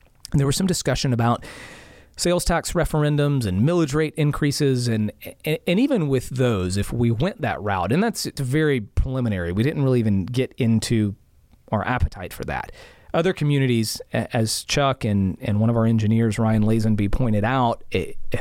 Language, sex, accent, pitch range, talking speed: English, male, American, 105-135 Hz, 175 wpm